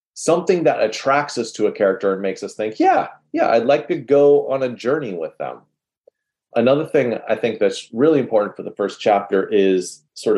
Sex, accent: male, American